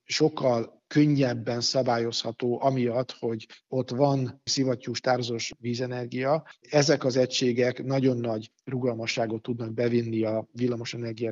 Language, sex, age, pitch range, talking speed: Hungarian, male, 50-69, 120-135 Hz, 100 wpm